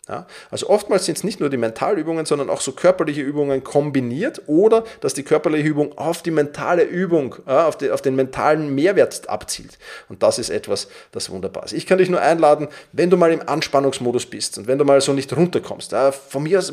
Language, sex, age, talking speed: German, male, 30-49, 220 wpm